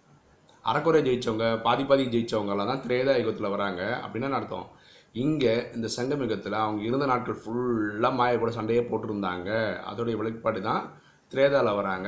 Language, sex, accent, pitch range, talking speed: Tamil, male, native, 105-125 Hz, 130 wpm